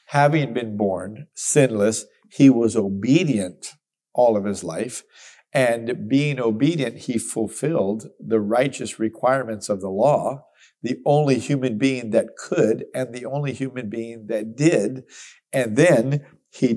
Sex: male